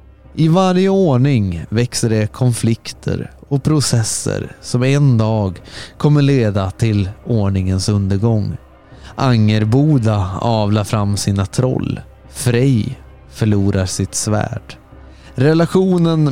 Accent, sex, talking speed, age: native, male, 95 wpm, 30-49